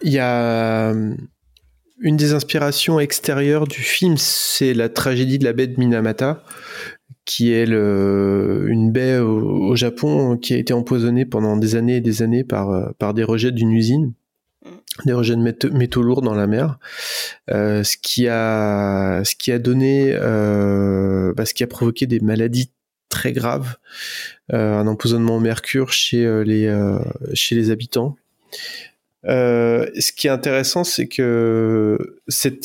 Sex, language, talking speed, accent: male, French, 145 wpm, French